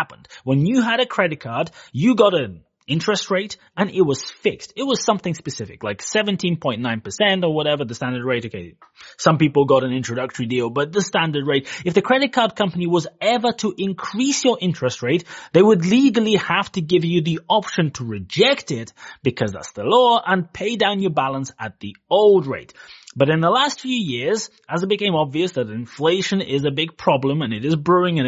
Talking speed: 200 wpm